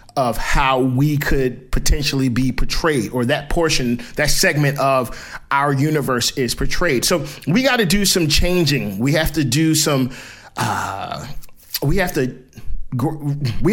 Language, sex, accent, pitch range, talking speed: English, male, American, 135-185 Hz, 150 wpm